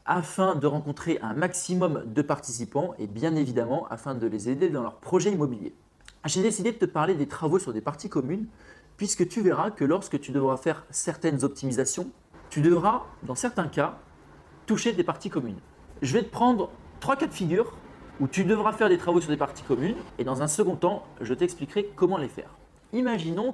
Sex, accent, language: male, French, French